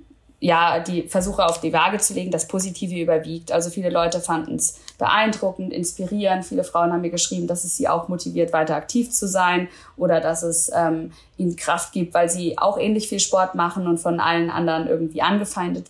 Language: German